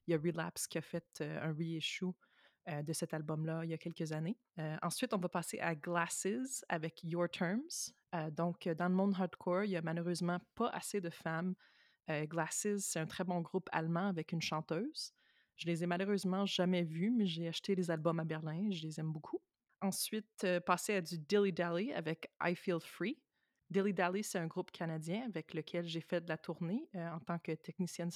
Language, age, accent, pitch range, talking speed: French, 20-39, Canadian, 165-190 Hz, 210 wpm